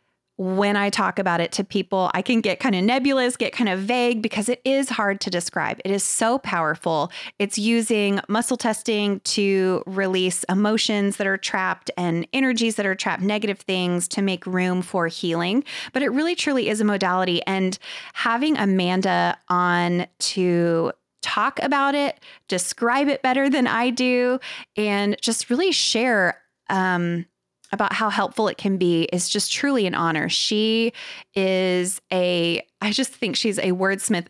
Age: 20-39